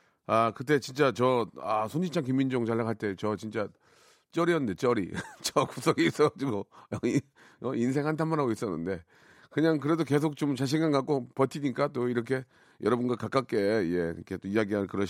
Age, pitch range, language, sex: 40-59, 110-160 Hz, Korean, male